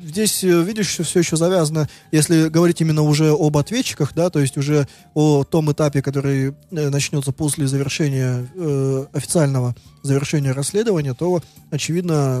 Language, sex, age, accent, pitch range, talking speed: Russian, male, 20-39, native, 140-160 Hz, 135 wpm